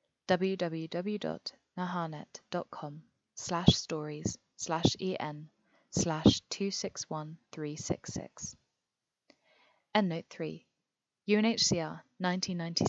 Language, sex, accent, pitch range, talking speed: English, female, British, 160-185 Hz, 85 wpm